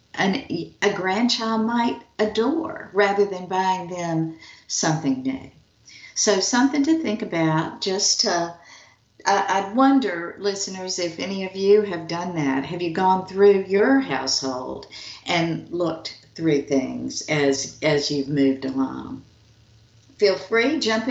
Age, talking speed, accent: 60-79, 130 wpm, American